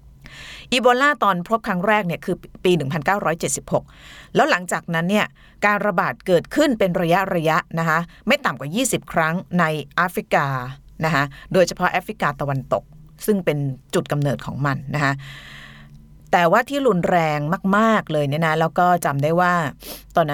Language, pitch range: Thai, 145-195 Hz